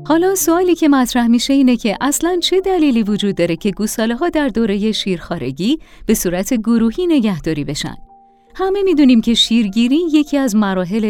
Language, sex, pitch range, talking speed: Persian, female, 175-275 Hz, 160 wpm